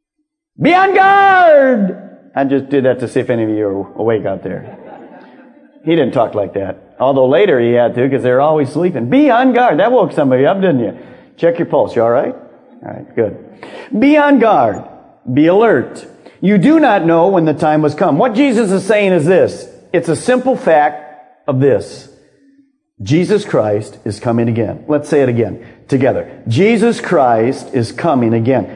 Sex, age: male, 40-59